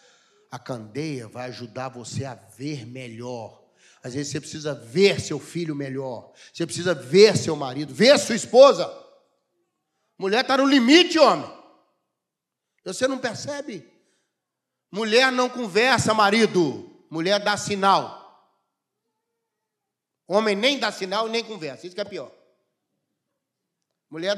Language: Portuguese